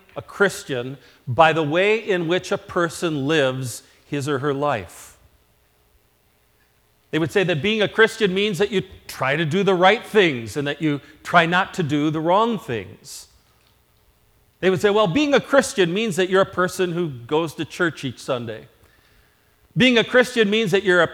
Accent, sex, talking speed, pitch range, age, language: American, male, 185 wpm, 130-175 Hz, 40-59, English